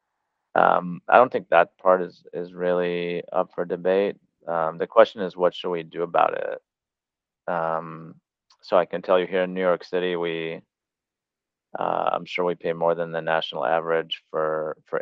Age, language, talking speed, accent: 30-49, English, 185 wpm, American